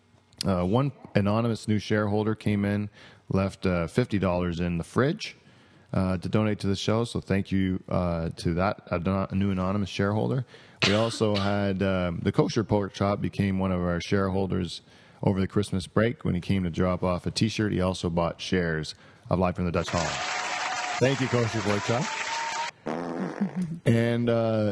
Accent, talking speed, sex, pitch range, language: American, 170 wpm, male, 90-105 Hz, English